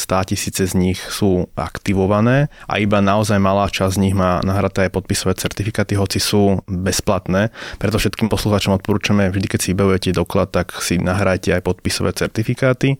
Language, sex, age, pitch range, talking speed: Slovak, male, 20-39, 95-105 Hz, 165 wpm